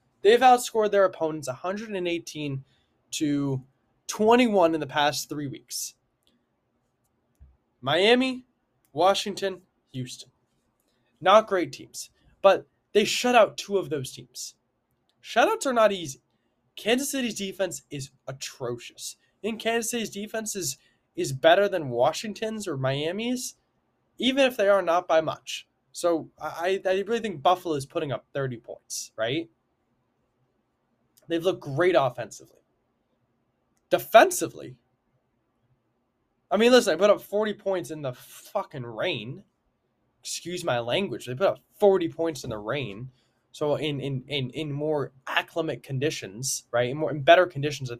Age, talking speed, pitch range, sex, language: 20-39, 135 wpm, 130-195 Hz, male, English